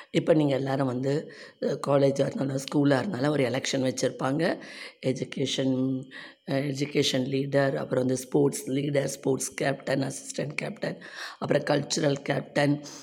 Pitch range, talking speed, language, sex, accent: 135-160 Hz, 115 wpm, Tamil, female, native